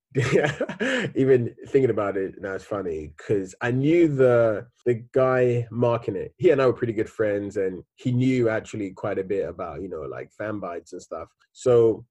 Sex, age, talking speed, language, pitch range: male, 20-39, 190 wpm, English, 100-125 Hz